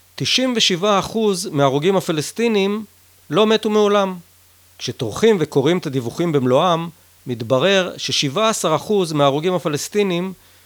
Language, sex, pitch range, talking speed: Hebrew, male, 125-180 Hz, 85 wpm